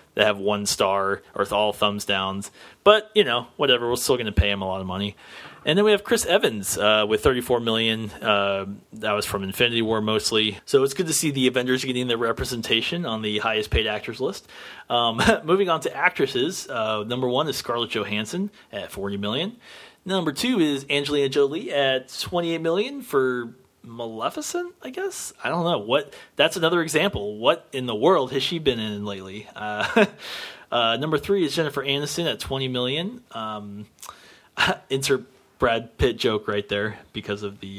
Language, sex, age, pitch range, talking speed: English, male, 30-49, 105-155 Hz, 185 wpm